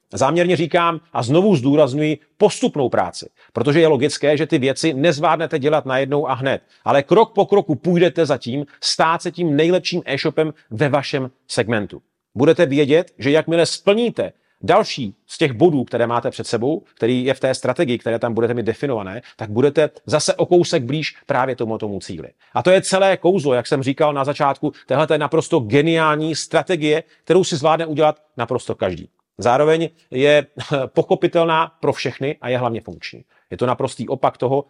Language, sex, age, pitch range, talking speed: Czech, male, 40-59, 120-160 Hz, 175 wpm